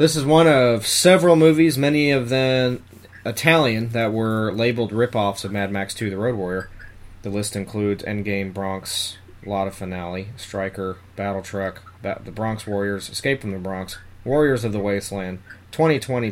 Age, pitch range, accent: 30-49, 95-115 Hz, American